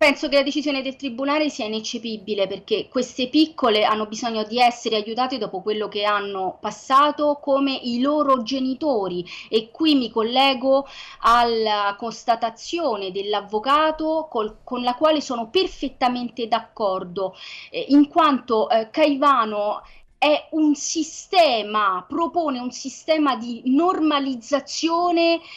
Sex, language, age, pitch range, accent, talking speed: female, Italian, 30-49, 235-310 Hz, native, 115 wpm